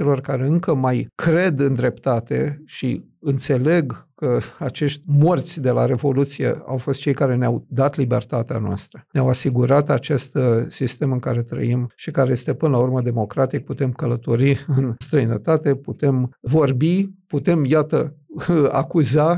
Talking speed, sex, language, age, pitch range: 140 wpm, male, Romanian, 50-69, 130-155 Hz